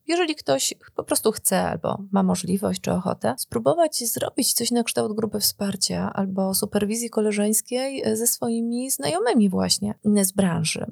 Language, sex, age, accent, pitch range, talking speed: Polish, female, 30-49, native, 200-235 Hz, 145 wpm